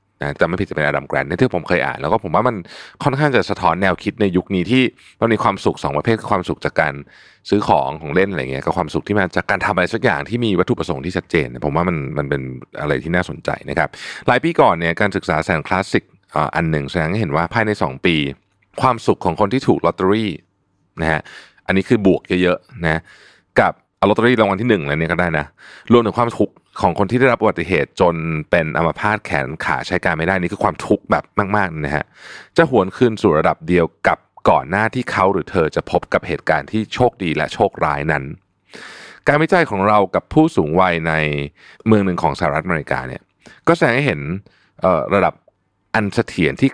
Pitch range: 80-110 Hz